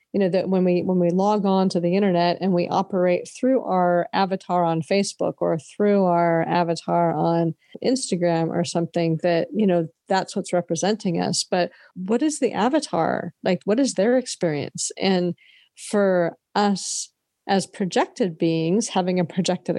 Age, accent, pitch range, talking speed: 40-59, American, 170-200 Hz, 165 wpm